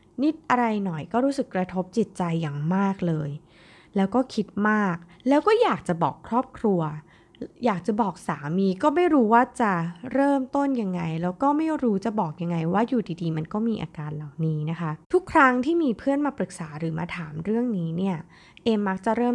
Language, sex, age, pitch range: Thai, female, 20-39, 165-230 Hz